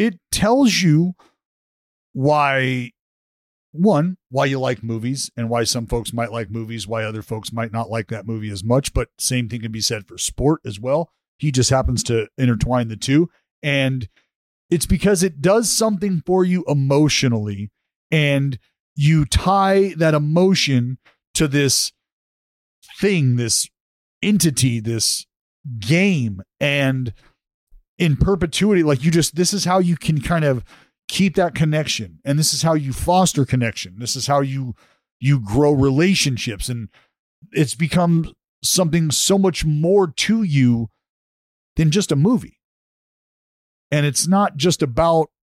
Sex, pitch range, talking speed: male, 115-165 Hz, 150 wpm